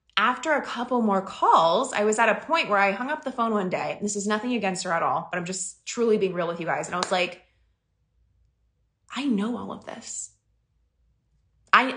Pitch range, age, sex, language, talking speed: 195-270 Hz, 20-39, female, English, 220 wpm